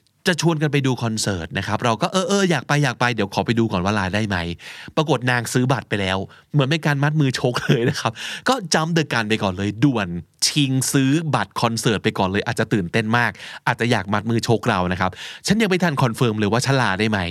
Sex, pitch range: male, 105-145 Hz